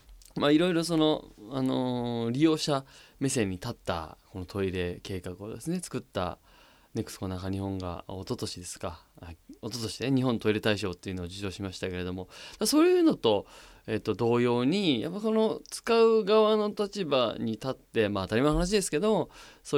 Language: Japanese